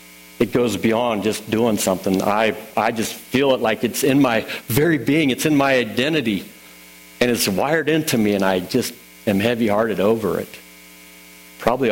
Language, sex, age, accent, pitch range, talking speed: English, male, 60-79, American, 95-125 Hz, 175 wpm